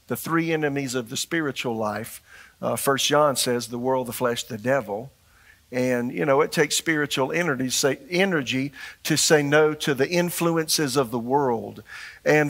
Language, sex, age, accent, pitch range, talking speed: English, male, 50-69, American, 130-155 Hz, 170 wpm